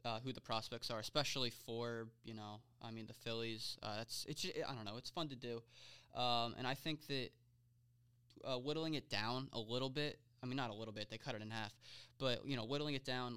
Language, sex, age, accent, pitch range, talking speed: English, male, 20-39, American, 120-140 Hz, 245 wpm